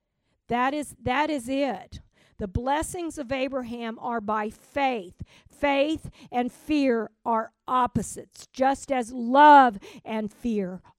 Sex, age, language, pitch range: female, 50-69, English, 200-255 Hz